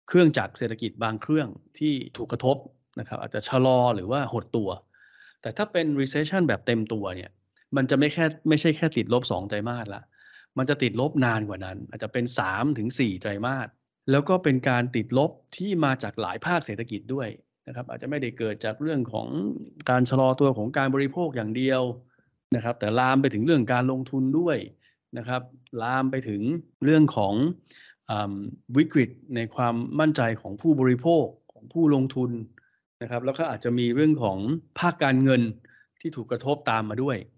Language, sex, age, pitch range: Thai, male, 20-39, 115-145 Hz